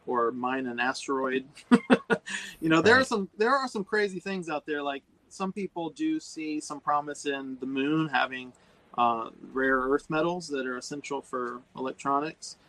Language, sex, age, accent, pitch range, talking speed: English, male, 30-49, American, 130-150 Hz, 170 wpm